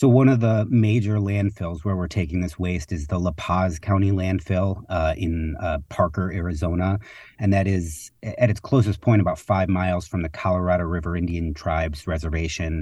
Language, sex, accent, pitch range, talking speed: English, male, American, 90-115 Hz, 185 wpm